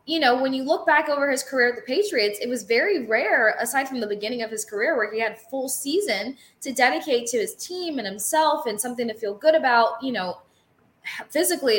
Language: English